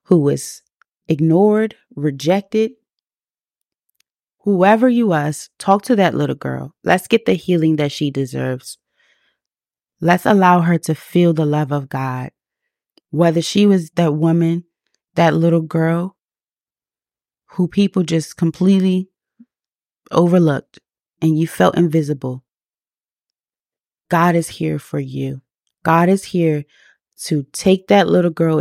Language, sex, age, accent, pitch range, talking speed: English, female, 20-39, American, 150-185 Hz, 120 wpm